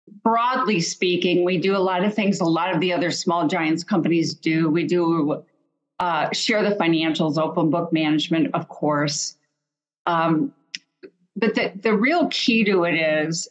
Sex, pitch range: female, 170-210 Hz